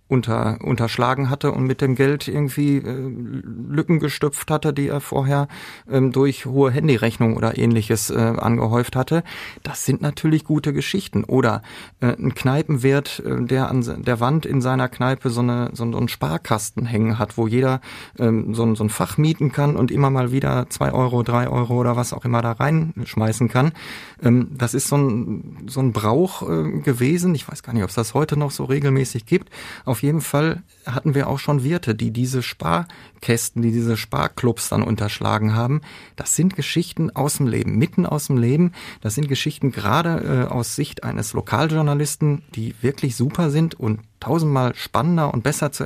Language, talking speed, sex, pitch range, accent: German, 185 wpm, male, 115-145 Hz, German